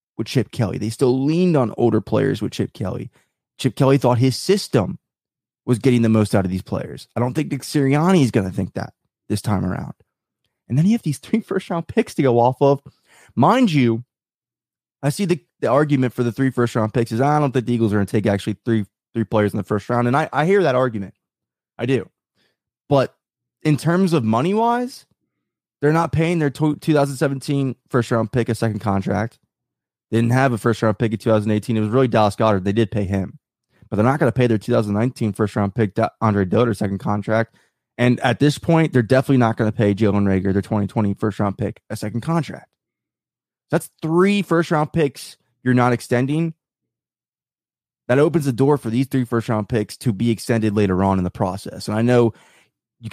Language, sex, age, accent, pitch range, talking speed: English, male, 20-39, American, 110-140 Hz, 210 wpm